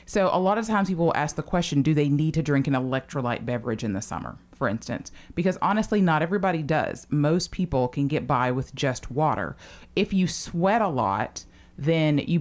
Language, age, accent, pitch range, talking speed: English, 30-49, American, 130-150 Hz, 210 wpm